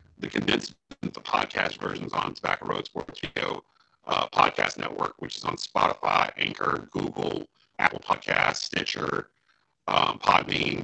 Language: English